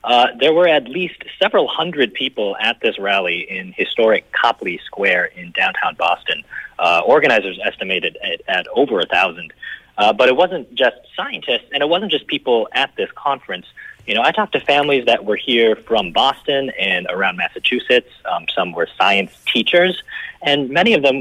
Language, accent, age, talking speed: English, American, 30-49, 175 wpm